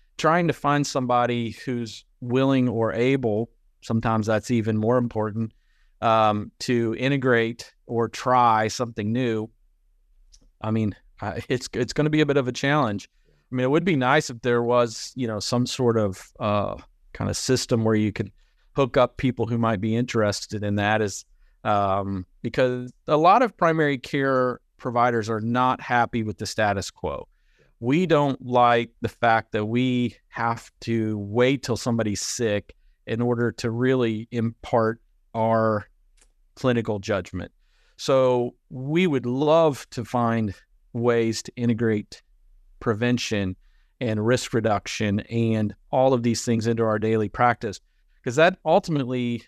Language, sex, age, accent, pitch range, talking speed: English, male, 40-59, American, 110-125 Hz, 150 wpm